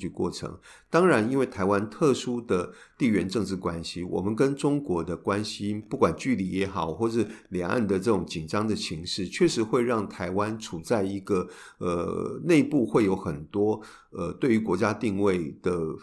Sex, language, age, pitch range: male, Chinese, 50-69, 90-120 Hz